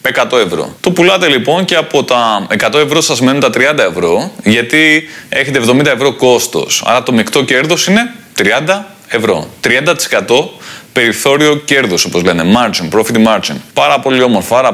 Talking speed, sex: 160 wpm, male